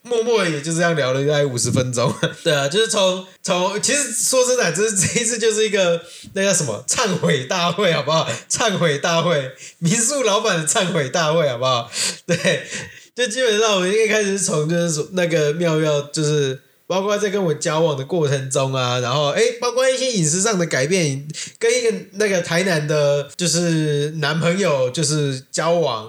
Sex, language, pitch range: male, Chinese, 145-190 Hz